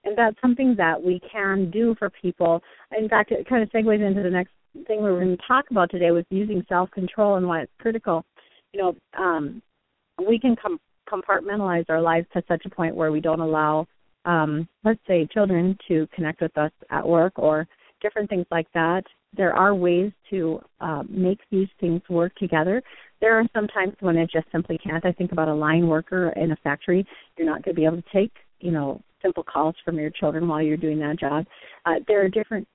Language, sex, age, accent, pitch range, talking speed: English, female, 40-59, American, 170-210 Hz, 215 wpm